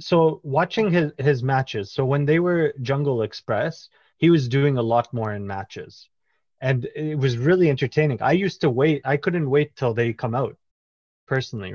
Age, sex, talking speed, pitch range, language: 20-39, male, 185 wpm, 120-155 Hz, English